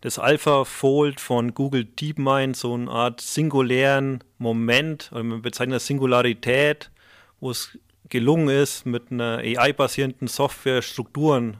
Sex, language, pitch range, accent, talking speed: male, German, 120-140 Hz, German, 125 wpm